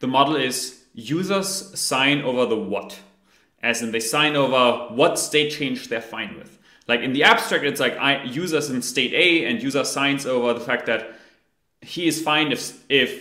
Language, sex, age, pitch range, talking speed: English, male, 20-39, 125-165 Hz, 190 wpm